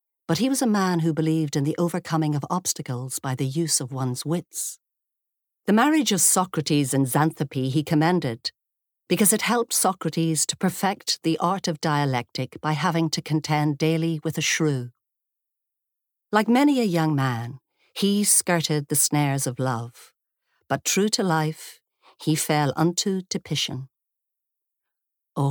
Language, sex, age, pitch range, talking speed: English, female, 50-69, 140-170 Hz, 150 wpm